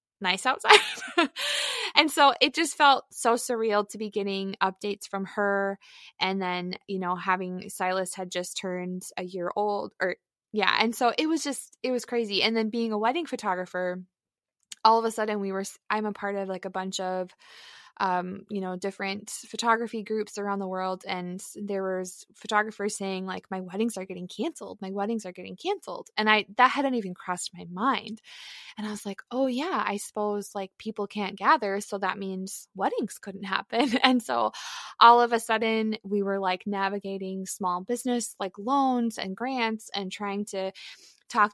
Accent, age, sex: American, 20-39, female